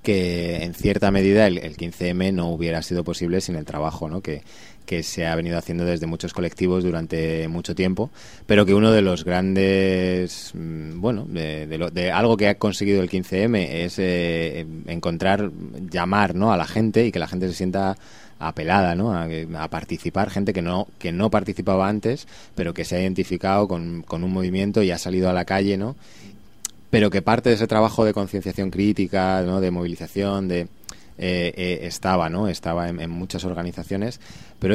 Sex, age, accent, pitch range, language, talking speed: male, 20-39, Spanish, 85-100 Hz, Spanish, 185 wpm